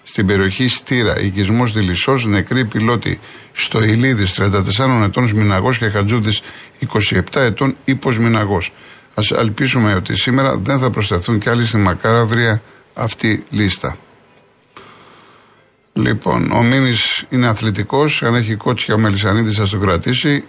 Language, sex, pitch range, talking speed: Greek, male, 105-125 Hz, 125 wpm